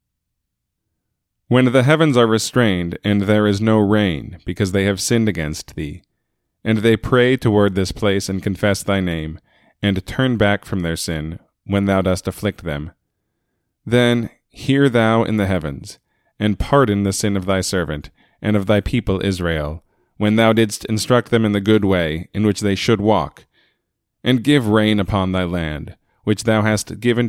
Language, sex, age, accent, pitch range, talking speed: English, male, 30-49, American, 95-115 Hz, 175 wpm